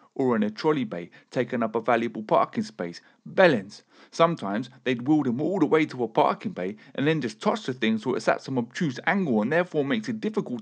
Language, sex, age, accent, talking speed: English, male, 40-59, British, 225 wpm